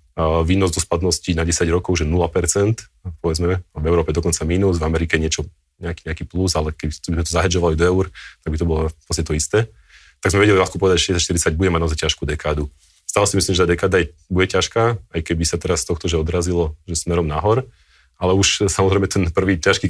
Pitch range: 80-90 Hz